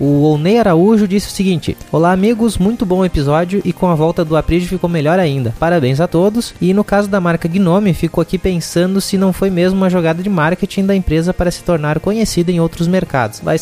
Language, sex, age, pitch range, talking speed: Portuguese, male, 20-39, 150-180 Hz, 220 wpm